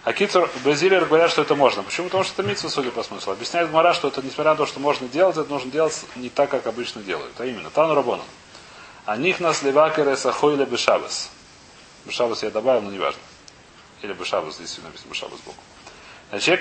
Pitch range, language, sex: 115-155 Hz, Russian, male